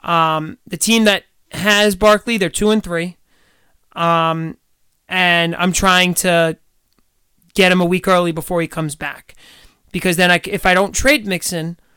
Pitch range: 165-200 Hz